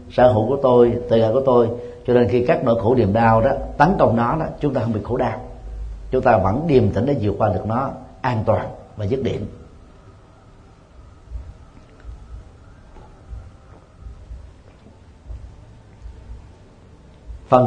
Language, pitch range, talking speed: Vietnamese, 95-125 Hz, 145 wpm